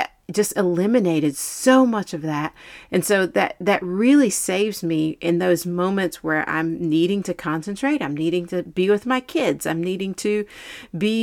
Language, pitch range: English, 170-225 Hz